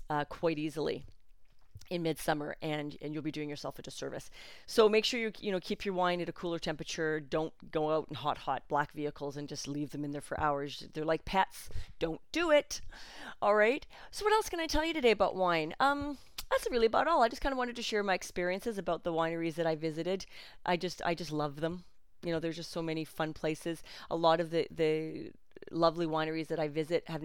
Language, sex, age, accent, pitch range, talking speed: English, female, 30-49, American, 150-190 Hz, 230 wpm